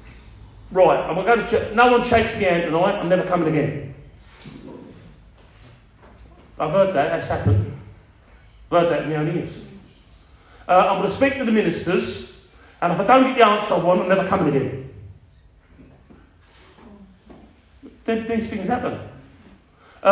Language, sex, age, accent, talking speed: English, male, 40-59, British, 155 wpm